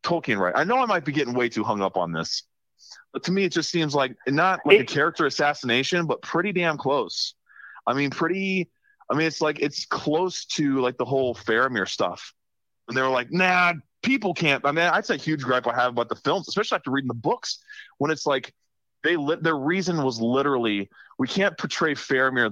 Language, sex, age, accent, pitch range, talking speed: English, male, 30-49, American, 115-165 Hz, 215 wpm